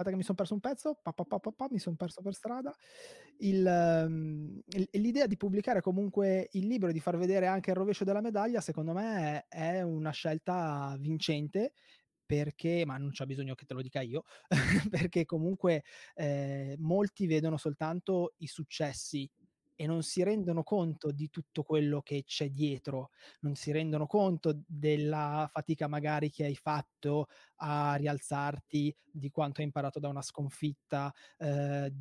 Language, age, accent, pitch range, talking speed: Italian, 20-39, native, 145-175 Hz, 150 wpm